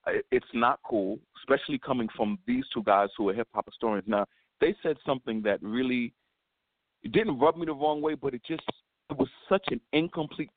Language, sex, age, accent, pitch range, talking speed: English, male, 50-69, American, 140-210 Hz, 200 wpm